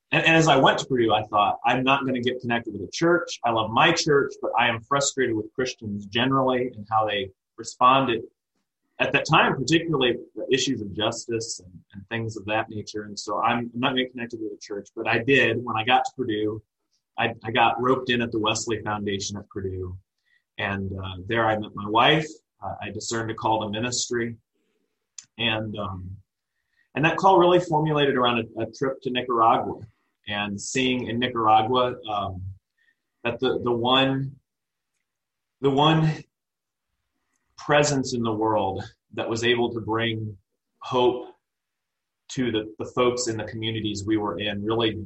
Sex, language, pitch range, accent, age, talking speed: male, English, 105-130 Hz, American, 30-49, 180 wpm